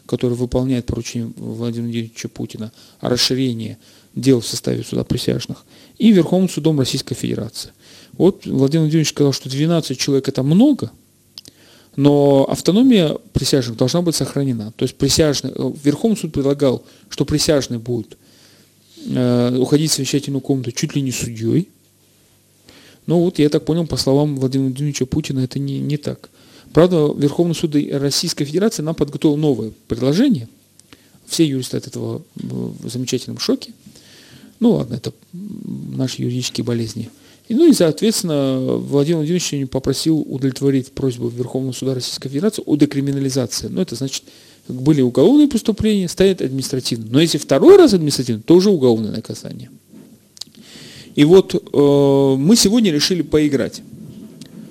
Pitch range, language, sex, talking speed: 130-160 Hz, Russian, male, 135 wpm